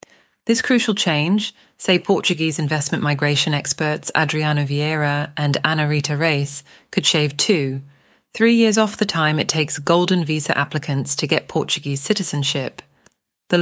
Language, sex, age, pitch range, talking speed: English, female, 30-49, 145-185 Hz, 140 wpm